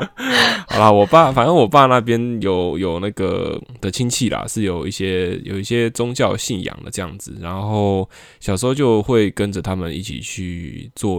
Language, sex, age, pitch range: Chinese, male, 10-29, 95-110 Hz